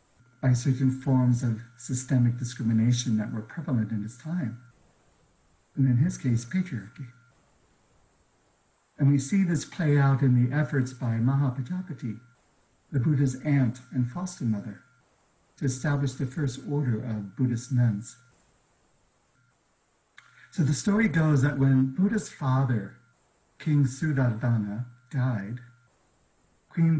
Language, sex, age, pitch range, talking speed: English, male, 60-79, 120-145 Hz, 120 wpm